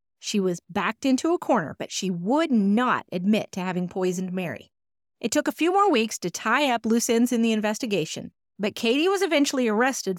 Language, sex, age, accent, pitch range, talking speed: English, female, 30-49, American, 195-255 Hz, 200 wpm